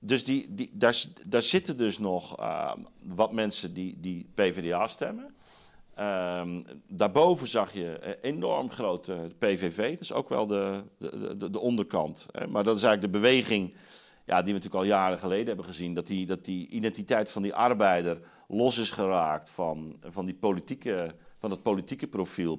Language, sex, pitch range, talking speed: Dutch, male, 90-110 Hz, 175 wpm